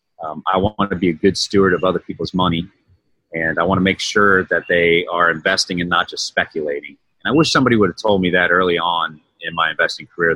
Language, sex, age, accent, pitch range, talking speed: English, male, 30-49, American, 85-110 Hz, 240 wpm